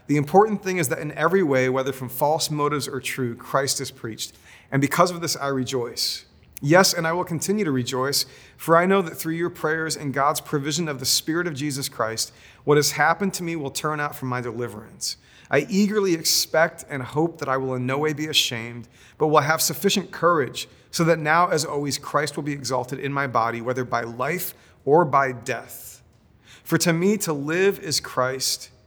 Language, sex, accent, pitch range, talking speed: English, male, American, 130-160 Hz, 210 wpm